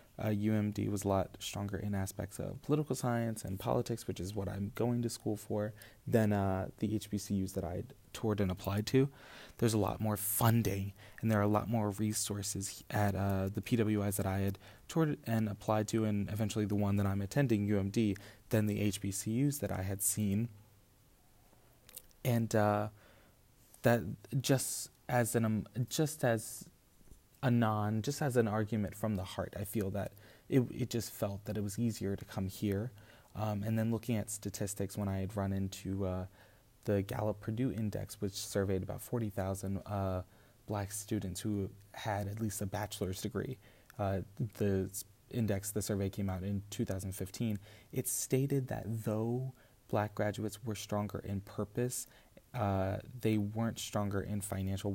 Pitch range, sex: 100-115 Hz, male